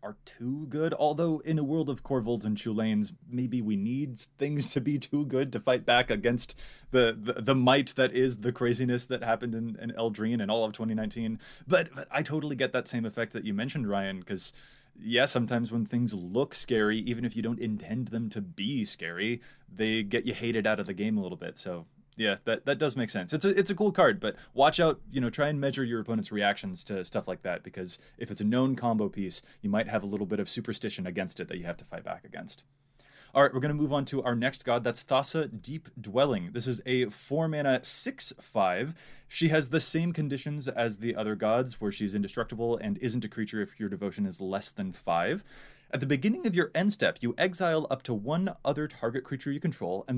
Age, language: 20-39, English